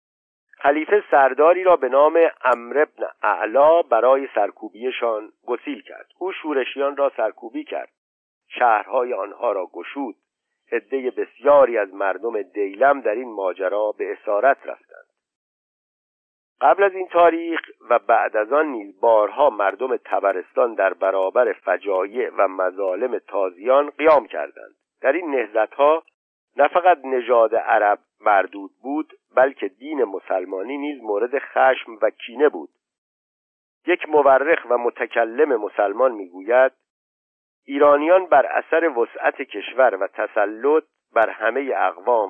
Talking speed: 120 wpm